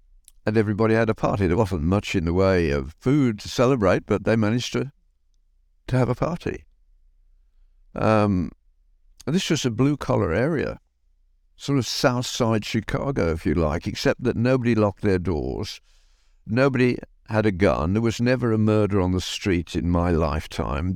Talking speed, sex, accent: 170 wpm, male, British